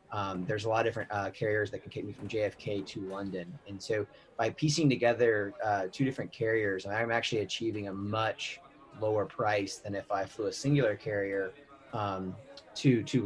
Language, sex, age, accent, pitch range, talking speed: English, male, 30-49, American, 100-125 Hz, 190 wpm